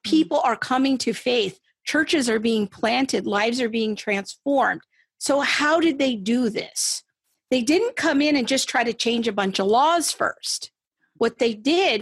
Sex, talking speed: female, 180 wpm